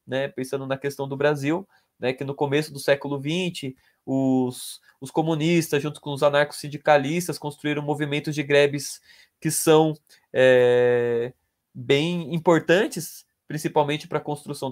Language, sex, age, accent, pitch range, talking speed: Portuguese, male, 20-39, Brazilian, 140-180 Hz, 135 wpm